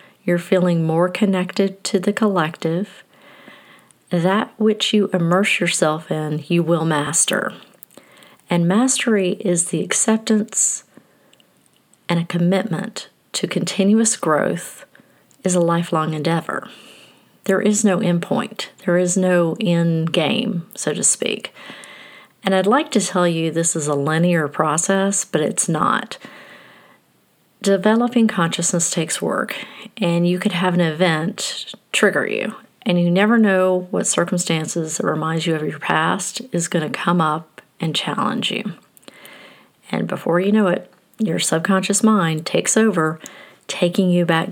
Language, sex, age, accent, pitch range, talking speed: English, female, 40-59, American, 165-205 Hz, 135 wpm